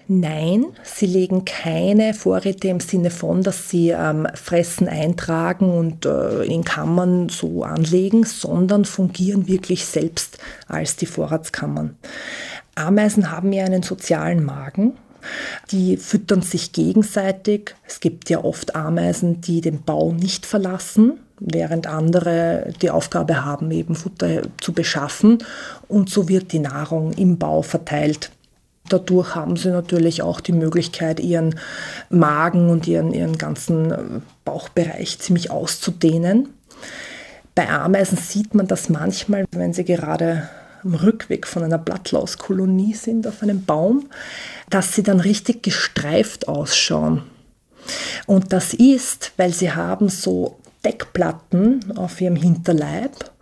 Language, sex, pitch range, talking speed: German, female, 165-200 Hz, 130 wpm